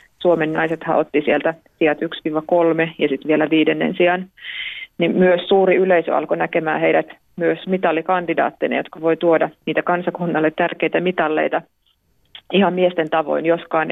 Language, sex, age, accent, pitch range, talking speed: Finnish, female, 30-49, native, 160-180 Hz, 135 wpm